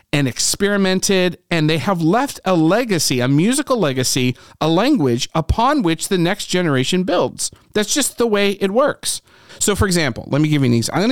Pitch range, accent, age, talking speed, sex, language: 125-180 Hz, American, 40-59, 190 wpm, male, English